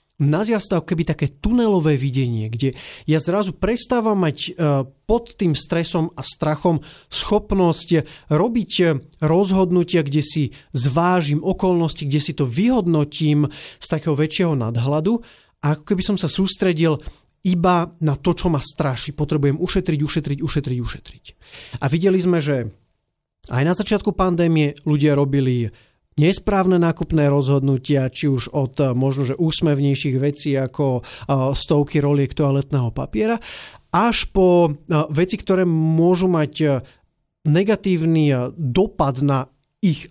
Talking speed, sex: 125 wpm, male